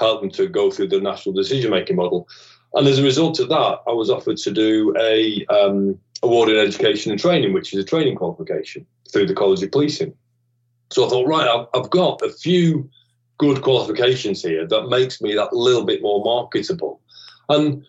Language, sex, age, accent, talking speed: English, male, 30-49, British, 195 wpm